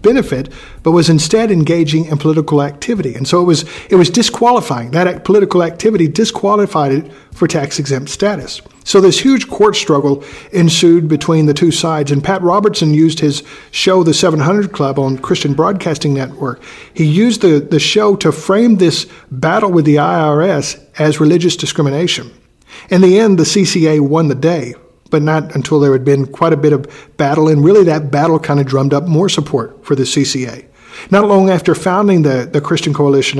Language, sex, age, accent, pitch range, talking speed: English, male, 50-69, American, 145-180 Hz, 180 wpm